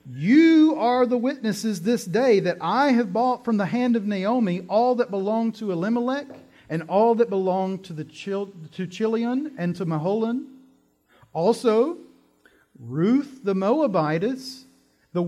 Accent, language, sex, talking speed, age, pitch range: American, English, male, 145 wpm, 40-59, 155-225 Hz